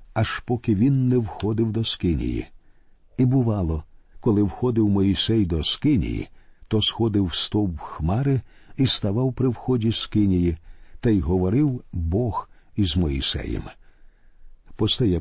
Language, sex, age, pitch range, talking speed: Ukrainian, male, 50-69, 95-125 Hz, 120 wpm